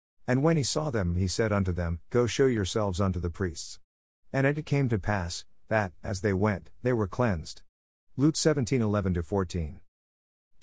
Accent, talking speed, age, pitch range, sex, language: American, 170 wpm, 50-69, 90-115 Hz, male, English